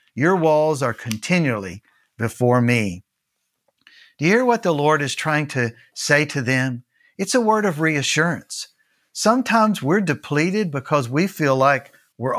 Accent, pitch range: American, 125-175 Hz